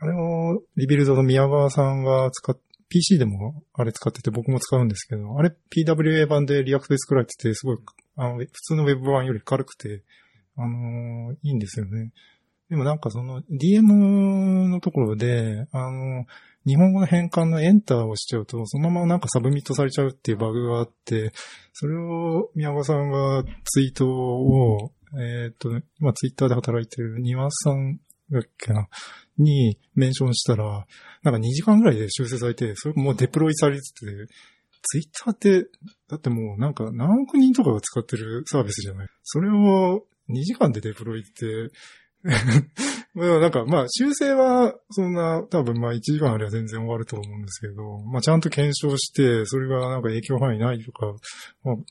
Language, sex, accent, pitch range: Japanese, male, native, 120-155 Hz